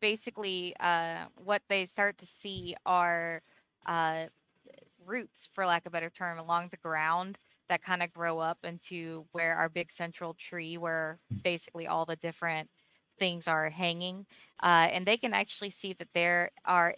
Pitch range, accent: 165-190 Hz, American